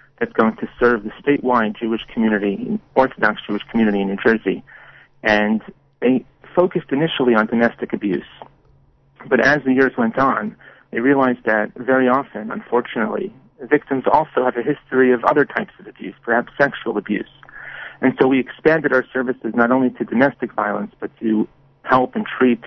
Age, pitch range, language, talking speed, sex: 40-59, 115-140 Hz, English, 165 wpm, male